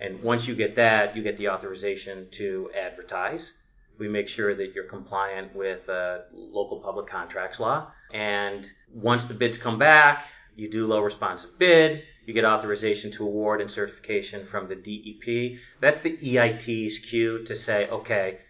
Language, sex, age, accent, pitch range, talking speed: English, male, 40-59, American, 105-130 Hz, 160 wpm